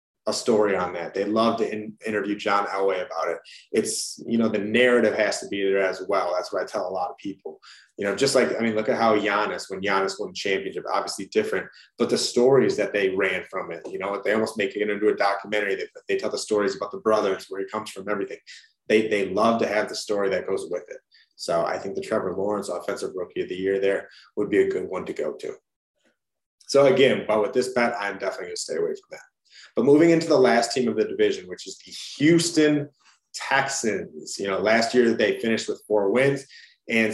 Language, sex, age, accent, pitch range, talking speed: English, male, 30-49, American, 105-140 Hz, 240 wpm